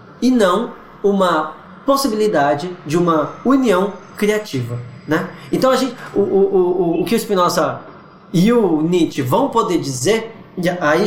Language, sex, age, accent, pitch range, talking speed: Portuguese, male, 20-39, Brazilian, 160-215 Hz, 125 wpm